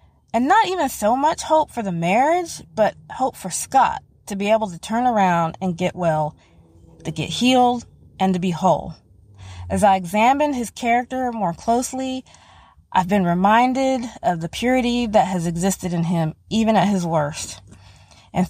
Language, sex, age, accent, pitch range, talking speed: English, female, 20-39, American, 175-245 Hz, 170 wpm